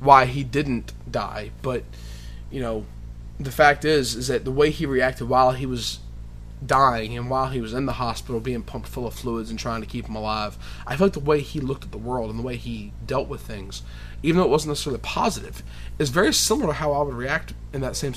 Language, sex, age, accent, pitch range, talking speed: English, male, 20-39, American, 110-145 Hz, 240 wpm